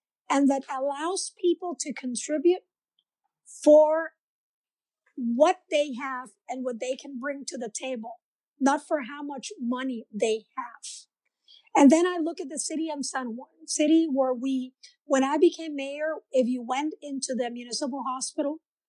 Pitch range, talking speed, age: 255-310 Hz, 155 wpm, 50-69